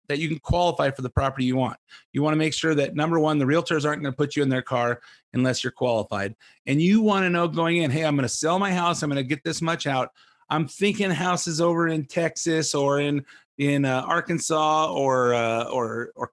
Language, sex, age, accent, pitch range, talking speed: English, male, 30-49, American, 130-160 Hz, 215 wpm